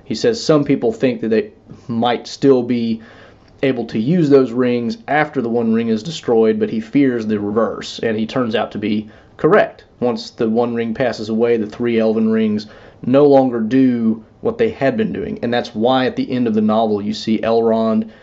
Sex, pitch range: male, 110-140 Hz